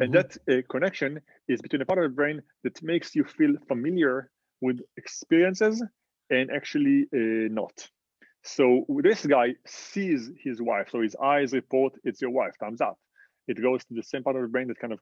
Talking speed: 195 wpm